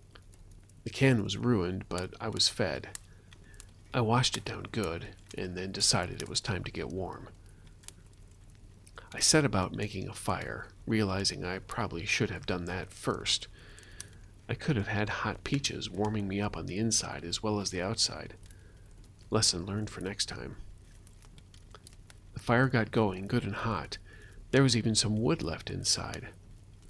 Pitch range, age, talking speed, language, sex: 95-110 Hz, 40-59, 160 wpm, English, male